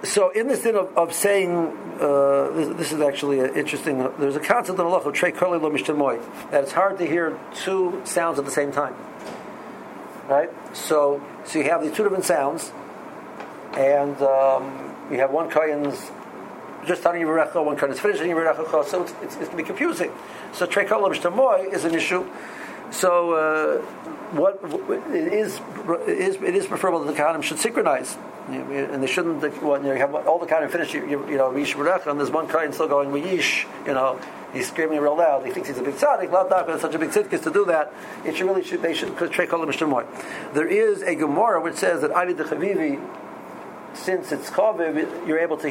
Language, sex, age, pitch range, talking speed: English, male, 60-79, 145-190 Hz, 205 wpm